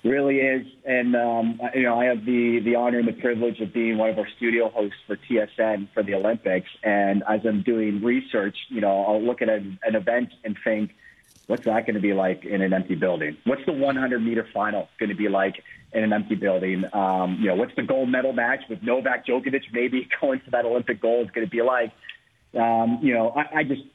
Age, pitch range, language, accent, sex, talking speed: 40-59, 110-130 Hz, English, American, male, 230 wpm